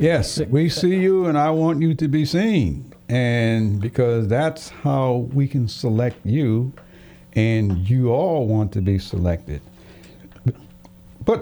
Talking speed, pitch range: 140 wpm, 120-155 Hz